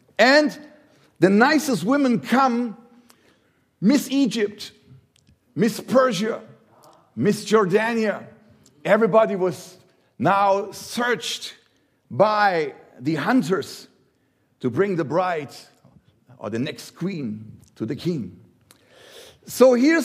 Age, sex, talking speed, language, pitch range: 50-69, male, 95 wpm, English, 190-245 Hz